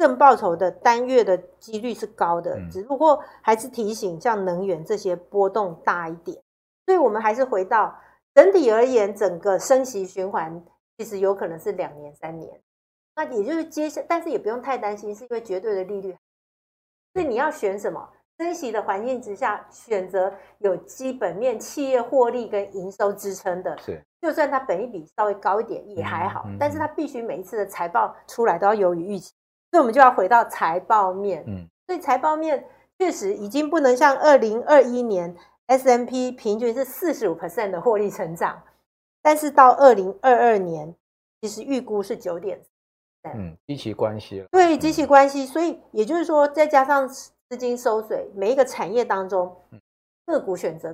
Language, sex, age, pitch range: Chinese, female, 50-69, 190-285 Hz